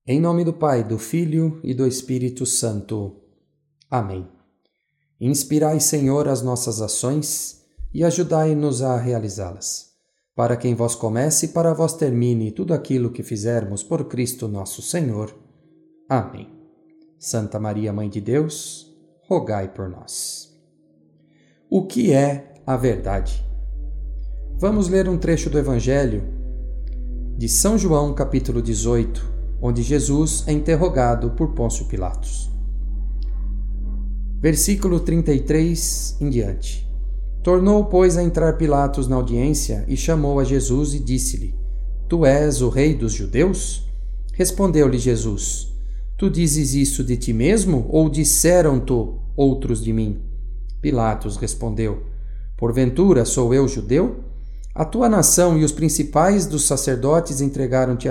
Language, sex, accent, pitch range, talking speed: Portuguese, male, Brazilian, 110-155 Hz, 120 wpm